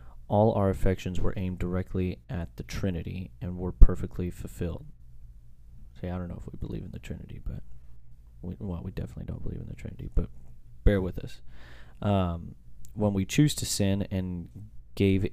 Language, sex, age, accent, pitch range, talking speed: English, male, 30-49, American, 65-95 Hz, 170 wpm